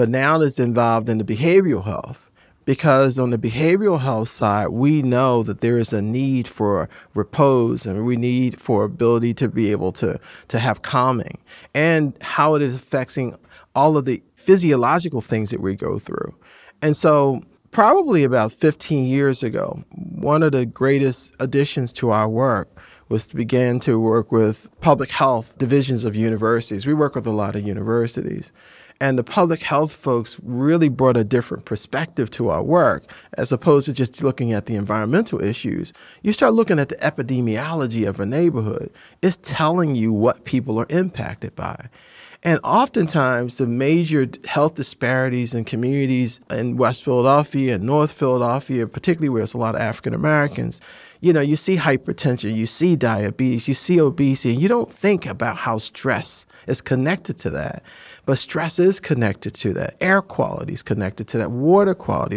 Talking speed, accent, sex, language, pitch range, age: 170 wpm, American, male, English, 115-155 Hz, 40-59